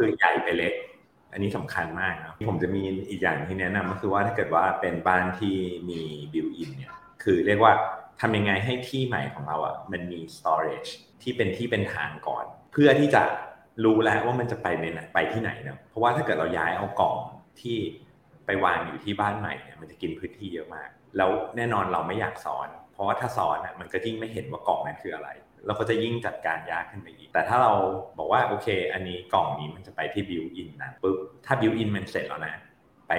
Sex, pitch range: male, 90-115 Hz